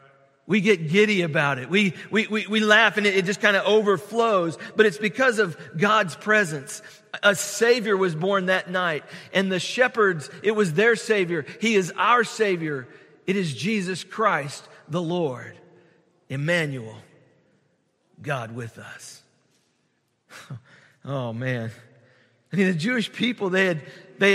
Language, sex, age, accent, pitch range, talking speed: English, male, 40-59, American, 140-210 Hz, 150 wpm